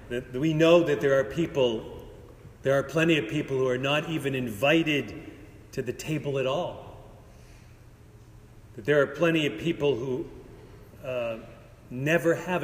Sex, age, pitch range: male, 40-59, 115-160 Hz